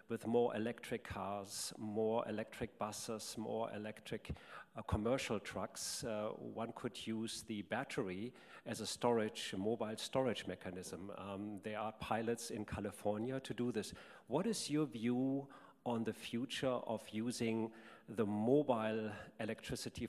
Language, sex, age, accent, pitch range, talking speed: English, male, 50-69, German, 110-130 Hz, 135 wpm